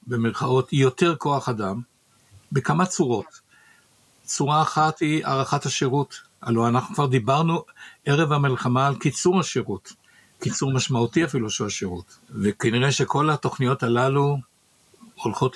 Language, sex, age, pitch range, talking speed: Hebrew, male, 60-79, 120-155 Hz, 115 wpm